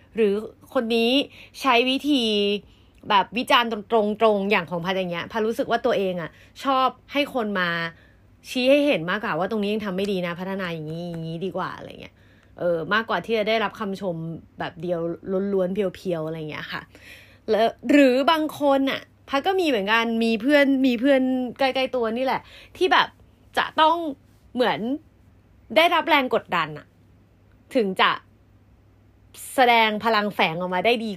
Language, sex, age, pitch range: Thai, female, 30-49, 180-270 Hz